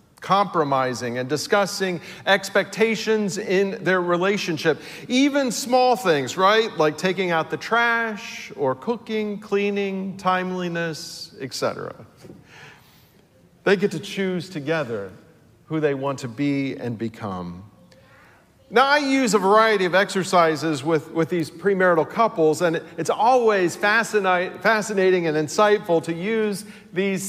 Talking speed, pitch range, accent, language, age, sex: 120 wpm, 160-215 Hz, American, English, 40-59, male